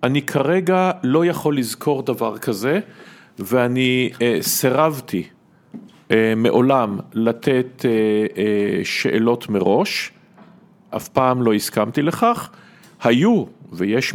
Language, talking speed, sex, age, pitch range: Hebrew, 100 wpm, male, 50-69, 125-180 Hz